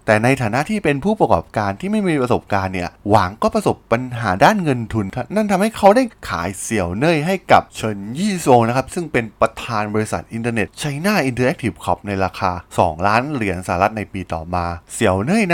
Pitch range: 95-150 Hz